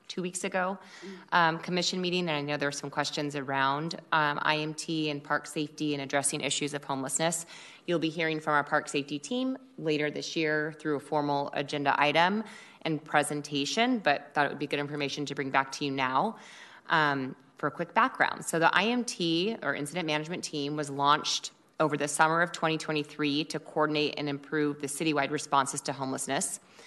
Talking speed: 185 wpm